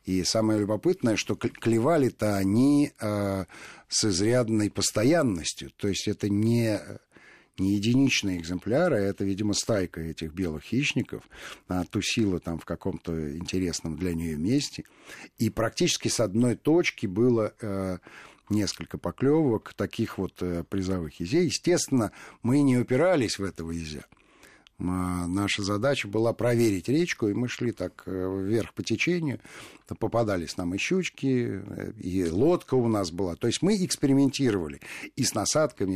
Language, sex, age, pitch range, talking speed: Russian, male, 50-69, 95-125 Hz, 135 wpm